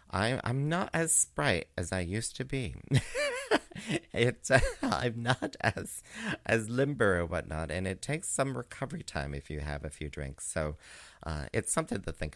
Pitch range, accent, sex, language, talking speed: 85-135 Hz, American, male, English, 175 wpm